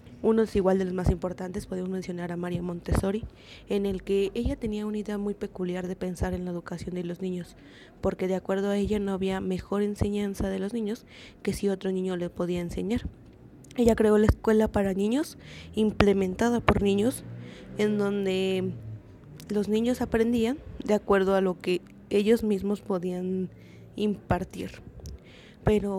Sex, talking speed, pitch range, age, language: female, 165 wpm, 185-210 Hz, 20-39, Spanish